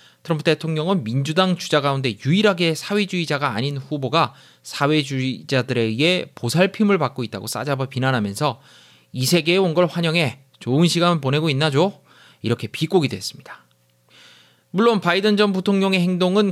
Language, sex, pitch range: Korean, male, 120-175 Hz